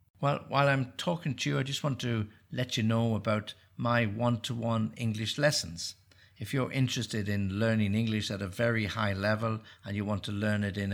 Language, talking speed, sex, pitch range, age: English, 195 wpm, male, 100-120 Hz, 60-79